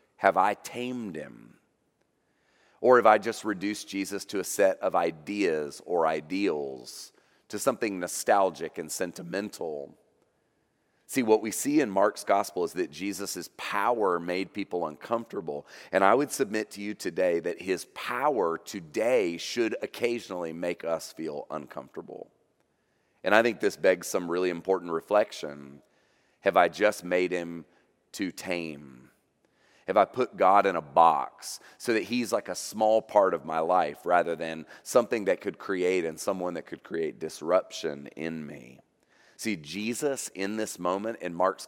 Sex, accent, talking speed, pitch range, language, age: male, American, 155 wpm, 90-120 Hz, English, 40-59